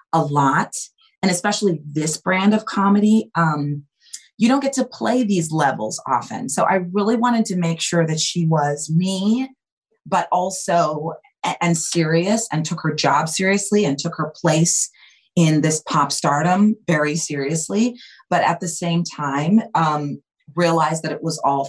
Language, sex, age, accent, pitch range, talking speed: English, female, 30-49, American, 150-195 Hz, 160 wpm